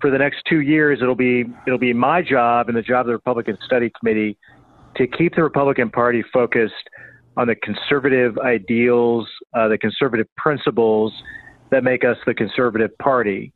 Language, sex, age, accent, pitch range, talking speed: English, male, 40-59, American, 120-135 Hz, 175 wpm